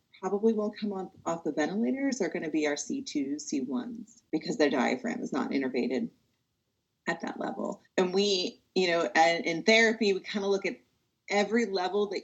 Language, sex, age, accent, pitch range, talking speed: English, female, 30-49, American, 155-225 Hz, 175 wpm